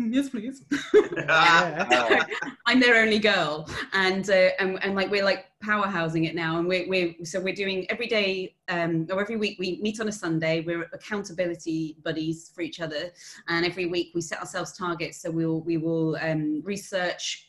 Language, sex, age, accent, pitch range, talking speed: English, female, 30-49, British, 155-190 Hz, 185 wpm